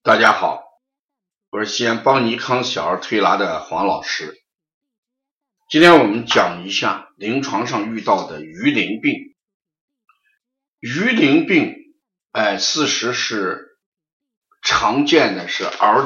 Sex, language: male, Chinese